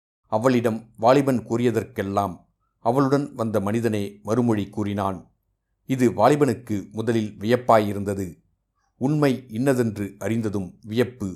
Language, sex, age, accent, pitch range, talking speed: Tamil, male, 50-69, native, 100-120 Hz, 85 wpm